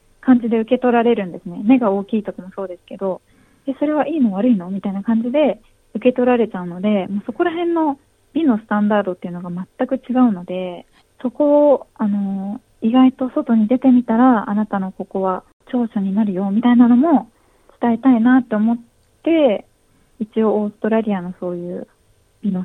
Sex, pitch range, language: female, 195-245 Hz, Japanese